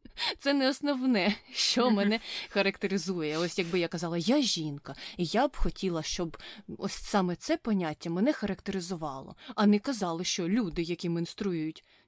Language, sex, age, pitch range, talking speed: Ukrainian, female, 20-39, 170-225 Hz, 150 wpm